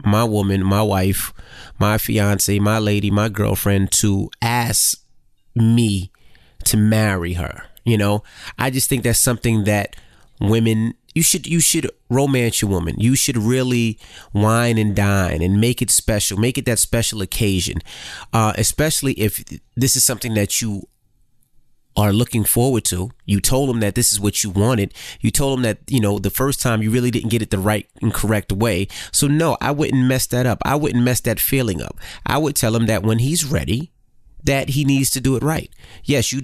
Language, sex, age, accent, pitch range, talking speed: English, male, 30-49, American, 105-125 Hz, 195 wpm